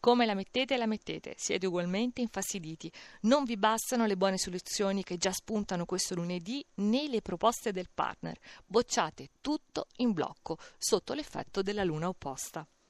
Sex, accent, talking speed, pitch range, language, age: female, native, 155 wpm, 185-255 Hz, Italian, 40-59